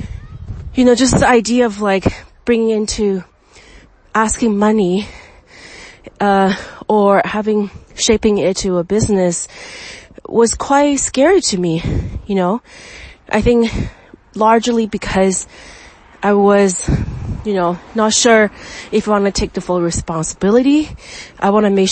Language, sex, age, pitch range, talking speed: English, female, 30-49, 180-220 Hz, 130 wpm